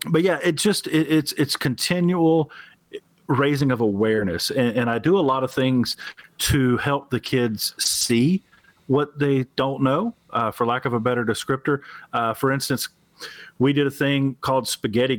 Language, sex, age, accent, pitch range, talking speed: English, male, 40-59, American, 115-145 Hz, 175 wpm